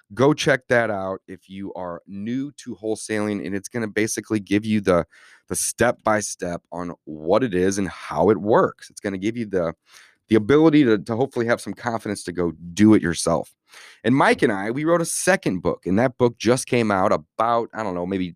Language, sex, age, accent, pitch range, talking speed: English, male, 30-49, American, 95-120 Hz, 220 wpm